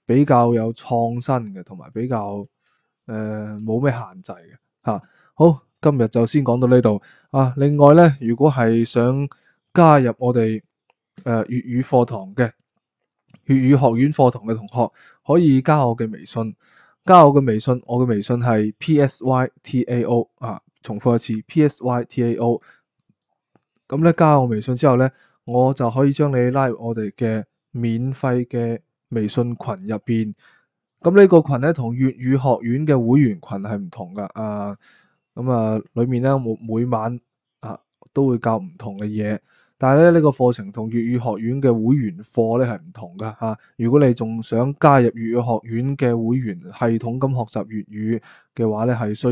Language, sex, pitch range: Chinese, male, 115-135 Hz